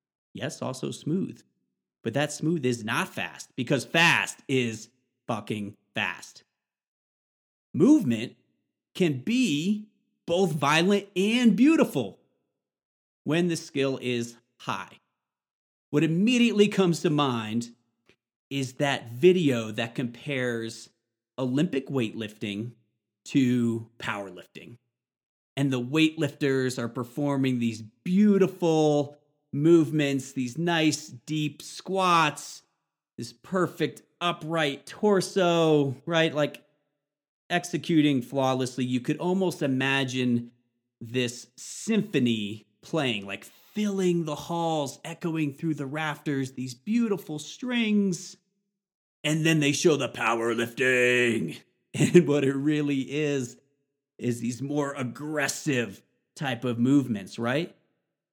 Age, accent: 30-49, American